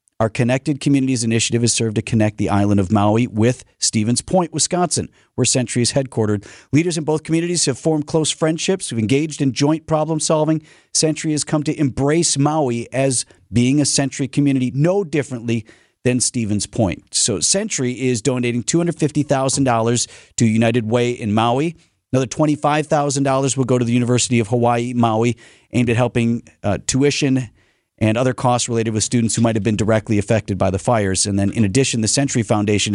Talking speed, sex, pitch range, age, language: 175 wpm, male, 110-145 Hz, 40-59, English